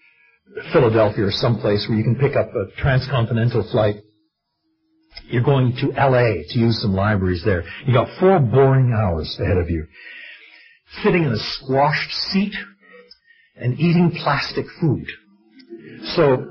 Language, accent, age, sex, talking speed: English, American, 60-79, male, 140 wpm